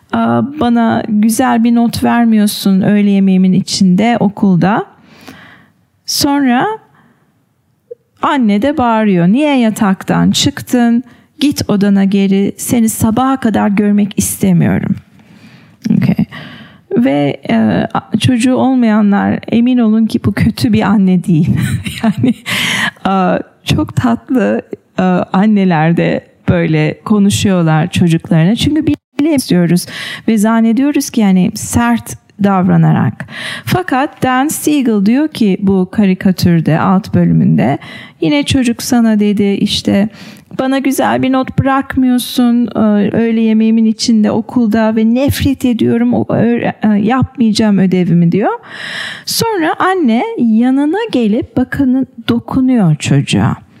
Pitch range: 190-245 Hz